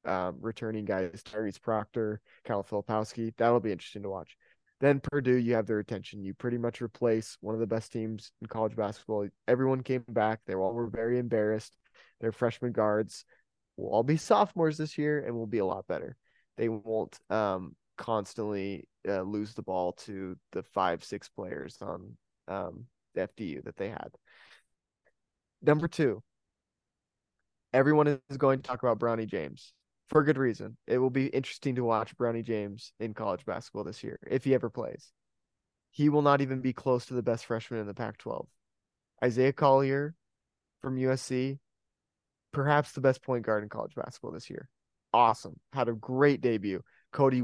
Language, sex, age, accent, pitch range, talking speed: English, male, 20-39, American, 110-135 Hz, 170 wpm